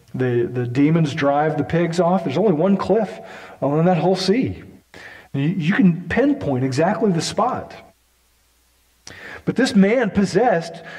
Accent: American